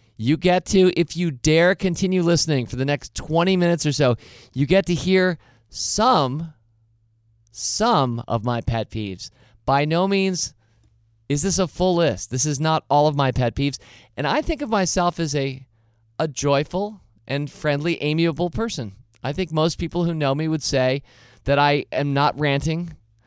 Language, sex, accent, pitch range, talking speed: English, male, American, 120-170 Hz, 175 wpm